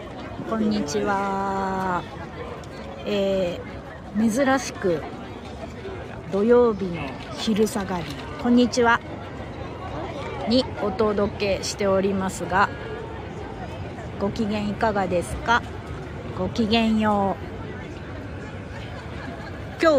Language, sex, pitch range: Japanese, female, 180-235 Hz